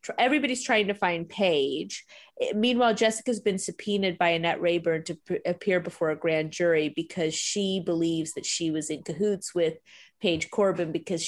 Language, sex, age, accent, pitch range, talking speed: English, female, 30-49, American, 155-205 Hz, 170 wpm